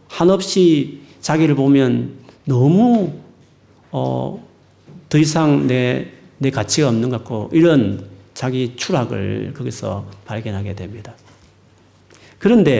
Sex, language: male, Korean